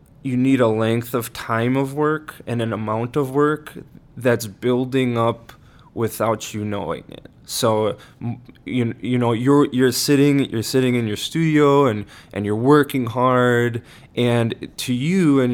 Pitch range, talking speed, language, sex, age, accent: 110-130 Hz, 160 wpm, English, male, 20-39, American